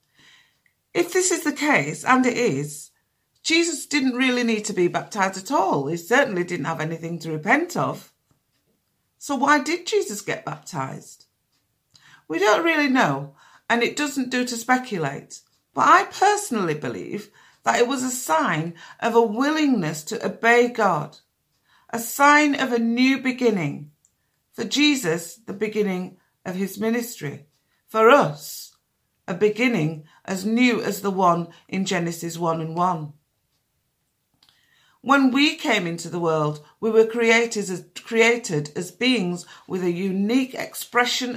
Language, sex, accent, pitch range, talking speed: English, female, British, 170-245 Hz, 145 wpm